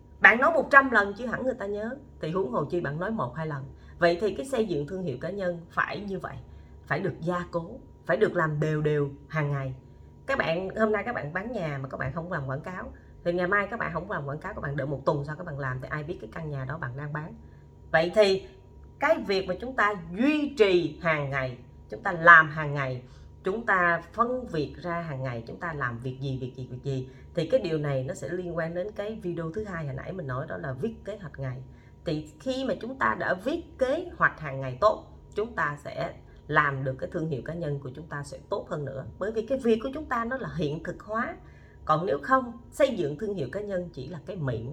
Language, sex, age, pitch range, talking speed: Vietnamese, female, 20-39, 140-200 Hz, 260 wpm